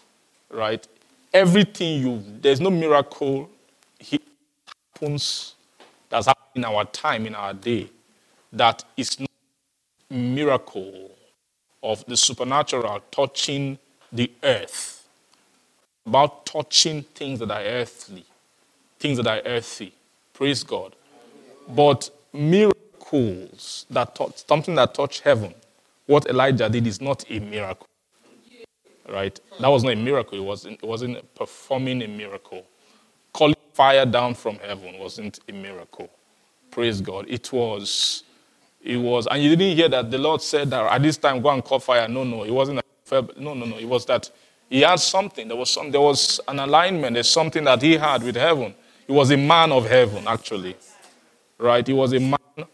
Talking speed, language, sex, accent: 155 wpm, English, male, Nigerian